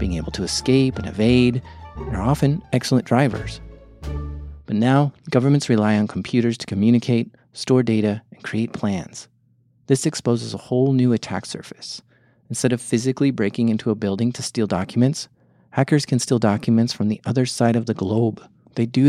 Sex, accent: male, American